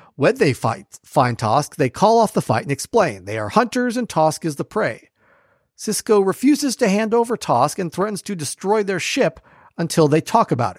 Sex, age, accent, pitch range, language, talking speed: male, 40-59, American, 155-215 Hz, English, 195 wpm